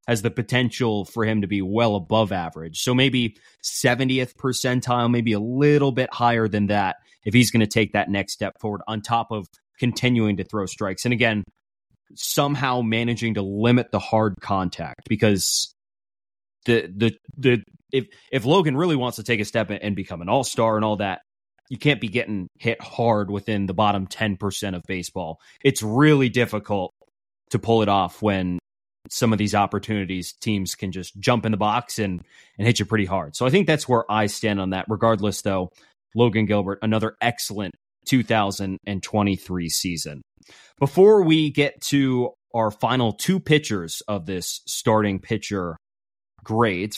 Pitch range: 100-125 Hz